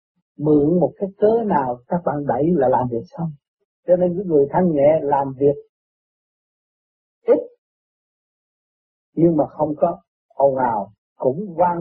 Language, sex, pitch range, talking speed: Vietnamese, male, 170-245 Hz, 145 wpm